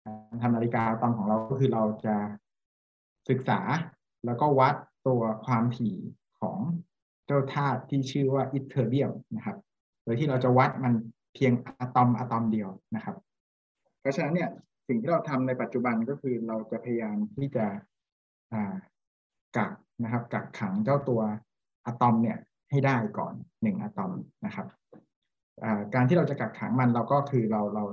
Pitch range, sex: 110-140 Hz, male